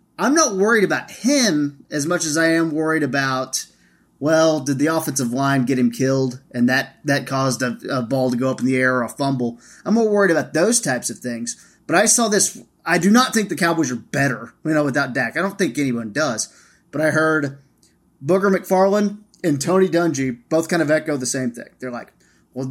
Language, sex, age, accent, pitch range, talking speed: English, male, 30-49, American, 135-180 Hz, 220 wpm